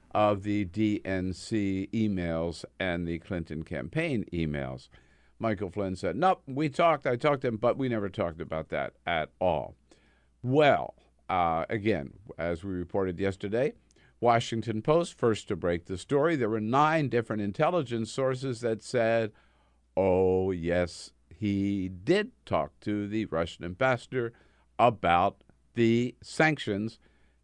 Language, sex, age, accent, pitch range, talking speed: English, male, 50-69, American, 85-120 Hz, 135 wpm